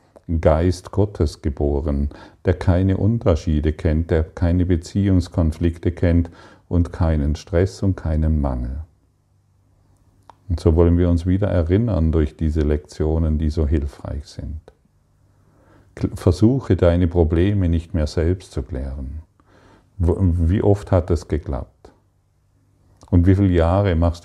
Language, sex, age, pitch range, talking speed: German, male, 40-59, 80-95 Hz, 120 wpm